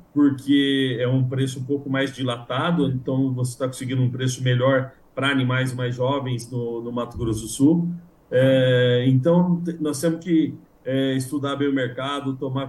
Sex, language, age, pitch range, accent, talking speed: male, Portuguese, 50-69, 125-140 Hz, Brazilian, 175 wpm